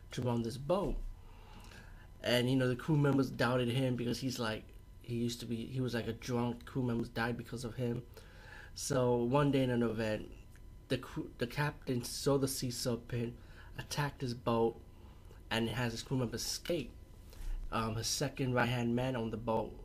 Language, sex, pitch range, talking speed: English, male, 110-125 Hz, 190 wpm